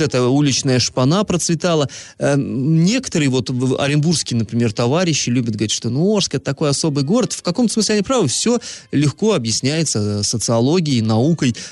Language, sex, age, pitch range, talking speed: Russian, male, 20-39, 120-160 Hz, 145 wpm